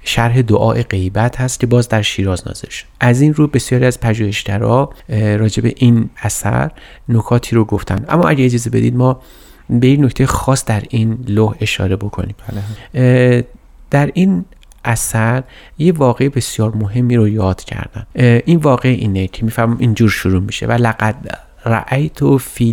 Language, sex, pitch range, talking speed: Persian, male, 105-125 Hz, 150 wpm